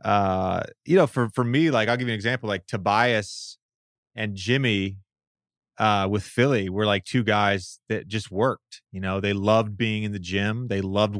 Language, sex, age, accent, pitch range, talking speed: English, male, 30-49, American, 95-120 Hz, 195 wpm